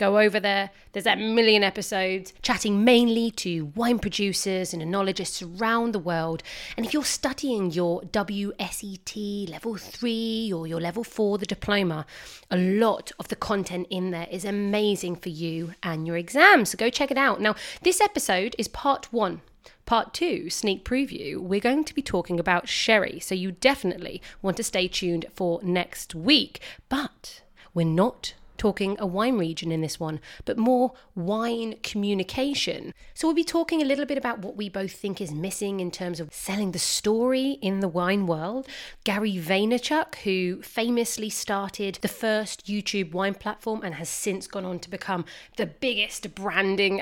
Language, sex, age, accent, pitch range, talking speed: English, female, 30-49, British, 185-230 Hz, 170 wpm